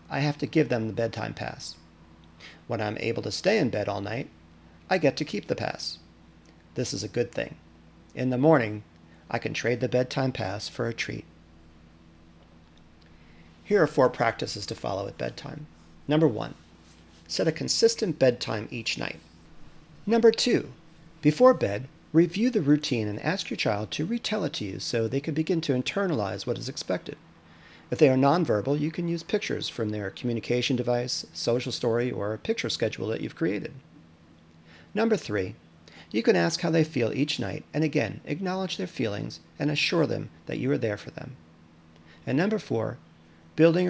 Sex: male